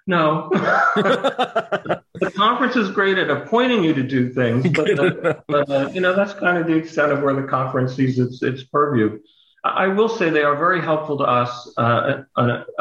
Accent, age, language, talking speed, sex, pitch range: American, 50-69, English, 185 wpm, male, 115-150 Hz